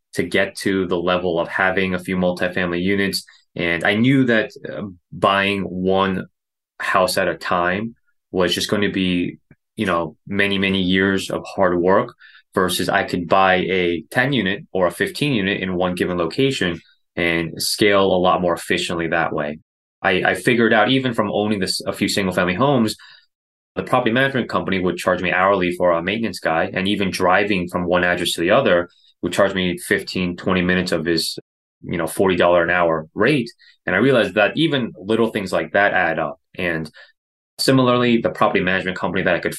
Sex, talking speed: male, 190 wpm